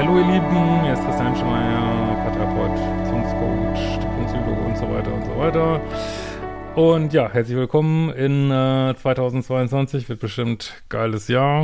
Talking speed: 135 wpm